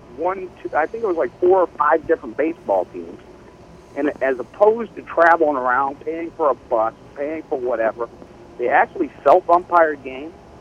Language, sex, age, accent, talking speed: English, male, 50-69, American, 170 wpm